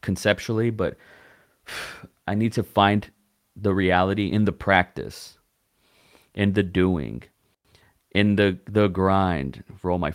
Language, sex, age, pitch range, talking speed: English, male, 30-49, 90-105 Hz, 120 wpm